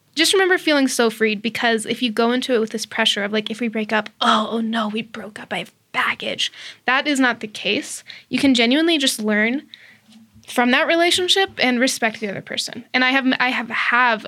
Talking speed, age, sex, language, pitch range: 220 wpm, 10-29, female, English, 225-260 Hz